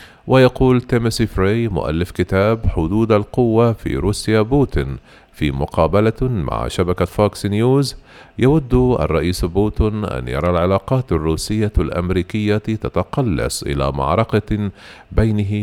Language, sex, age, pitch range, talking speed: Arabic, male, 40-59, 90-115 Hz, 105 wpm